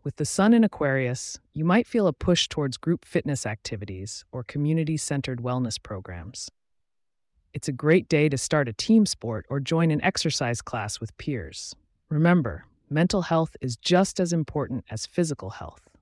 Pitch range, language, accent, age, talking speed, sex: 120-170 Hz, English, American, 30-49, 165 wpm, female